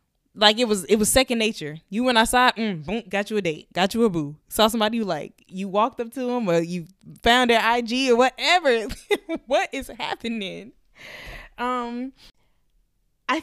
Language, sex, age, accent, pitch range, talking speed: English, female, 20-39, American, 175-240 Hz, 190 wpm